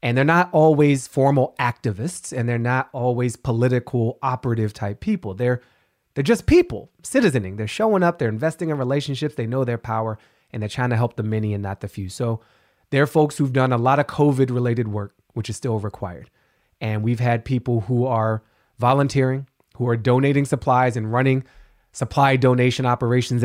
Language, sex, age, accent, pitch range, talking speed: English, male, 30-49, American, 115-140 Hz, 180 wpm